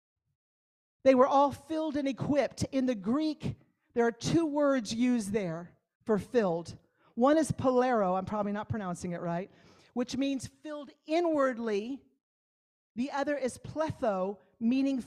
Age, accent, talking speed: 50-69, American, 140 wpm